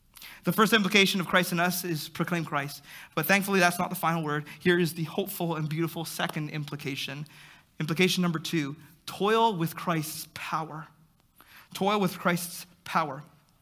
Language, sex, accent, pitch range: English, male, American, 165-220 Hz